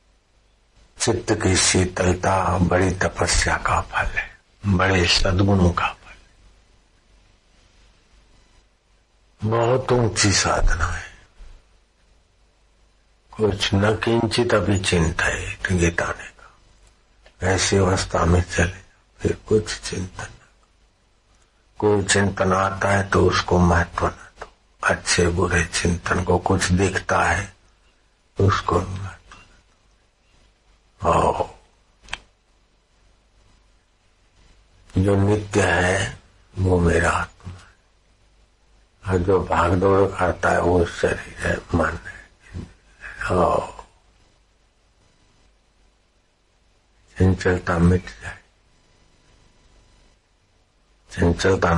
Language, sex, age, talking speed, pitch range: Hindi, male, 60-79, 80 wpm, 90-95 Hz